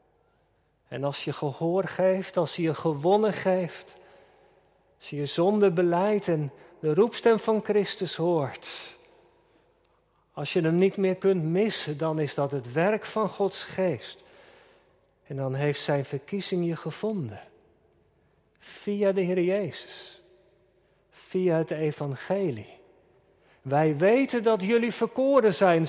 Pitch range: 155-200 Hz